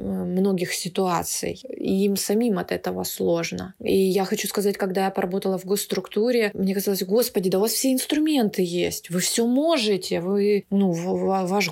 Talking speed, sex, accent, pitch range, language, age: 165 wpm, female, native, 180-205 Hz, Russian, 20-39